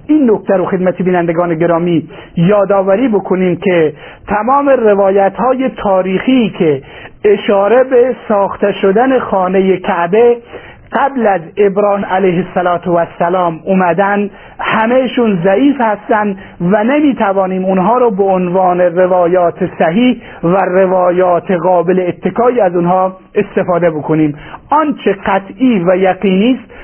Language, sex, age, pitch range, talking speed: Persian, male, 50-69, 175-210 Hz, 115 wpm